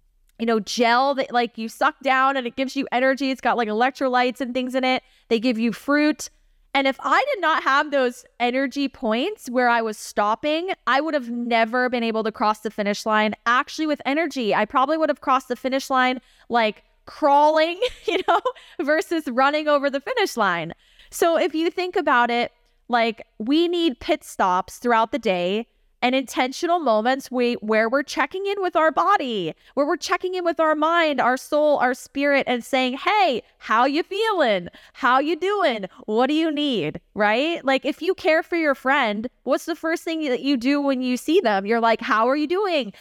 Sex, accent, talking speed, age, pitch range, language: female, American, 200 wpm, 20-39, 240-310 Hz, English